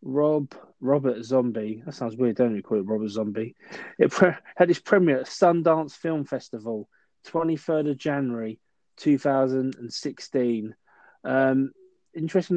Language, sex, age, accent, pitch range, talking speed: English, male, 20-39, British, 120-145 Hz, 135 wpm